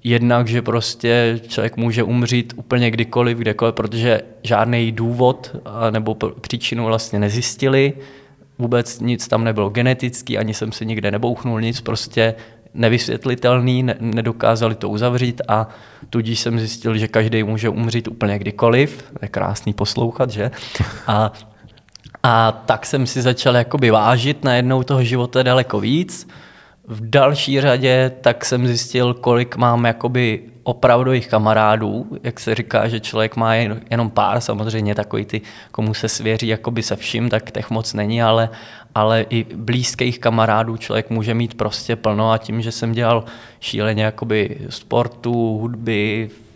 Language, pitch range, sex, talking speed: Czech, 110-125 Hz, male, 145 wpm